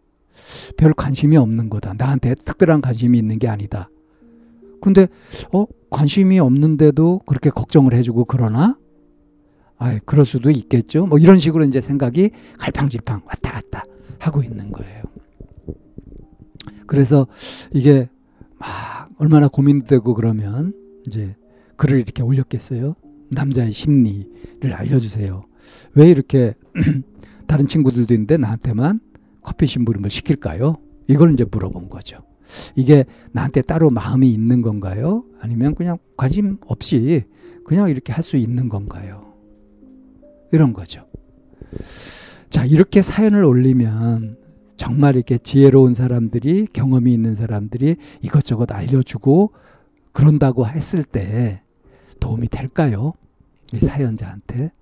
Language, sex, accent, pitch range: Korean, male, native, 115-150 Hz